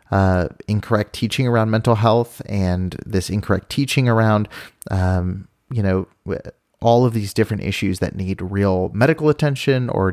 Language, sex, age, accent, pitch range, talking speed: English, male, 30-49, American, 95-115 Hz, 150 wpm